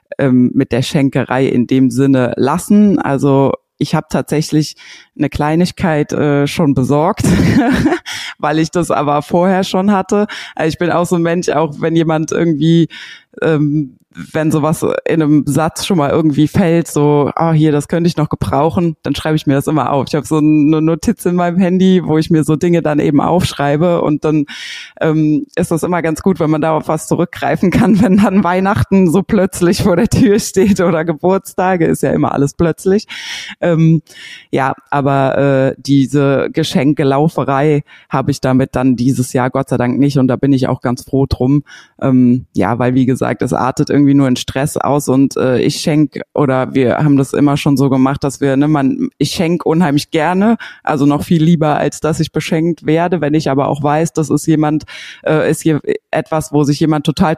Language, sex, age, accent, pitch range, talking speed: German, female, 20-39, German, 140-170 Hz, 195 wpm